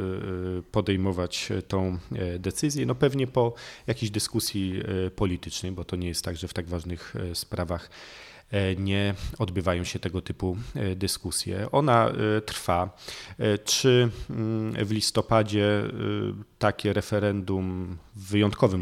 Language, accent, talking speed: Polish, native, 110 wpm